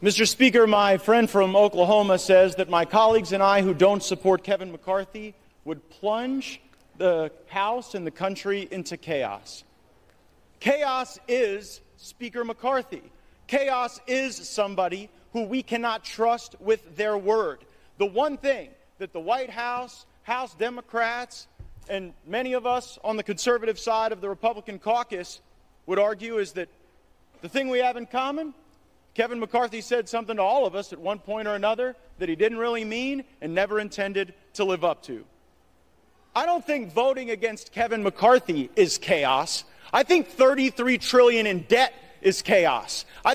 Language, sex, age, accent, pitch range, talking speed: English, male, 40-59, American, 200-250 Hz, 160 wpm